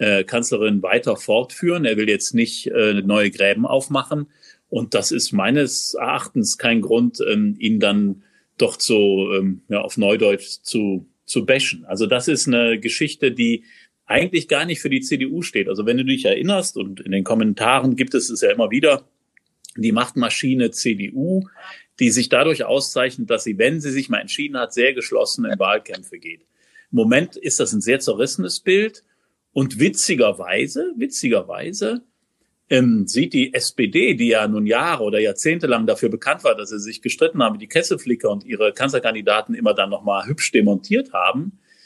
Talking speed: 170 wpm